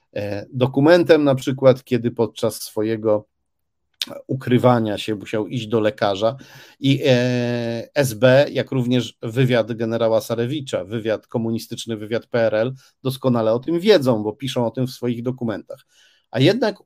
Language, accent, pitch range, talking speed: Polish, native, 115-140 Hz, 130 wpm